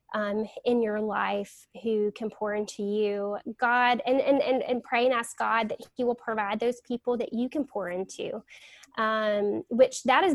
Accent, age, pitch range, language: American, 10-29, 210-260 Hz, English